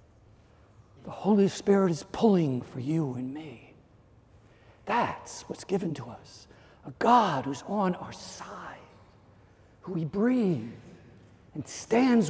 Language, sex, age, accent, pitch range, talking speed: English, male, 60-79, American, 130-215 Hz, 120 wpm